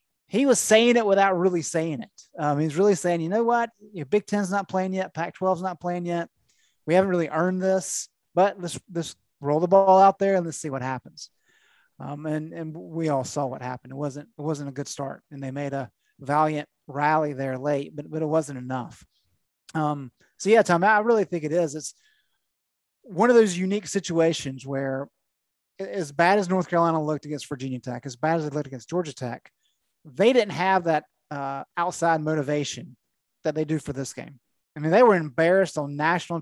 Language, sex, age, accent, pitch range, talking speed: English, male, 30-49, American, 140-175 Hz, 205 wpm